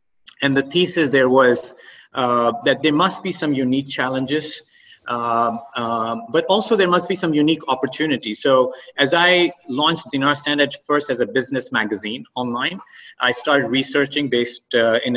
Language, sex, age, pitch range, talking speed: English, male, 30-49, 125-165 Hz, 160 wpm